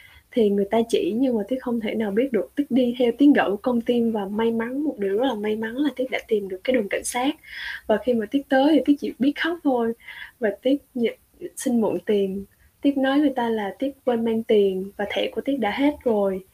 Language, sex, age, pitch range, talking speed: Vietnamese, female, 10-29, 215-275 Hz, 250 wpm